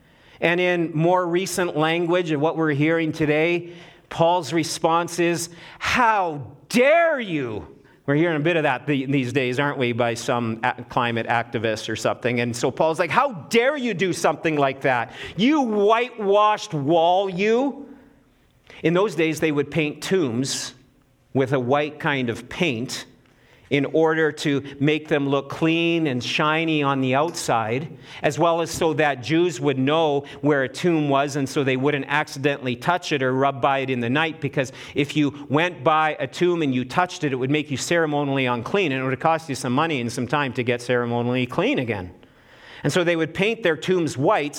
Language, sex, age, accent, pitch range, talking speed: English, male, 40-59, American, 135-180 Hz, 185 wpm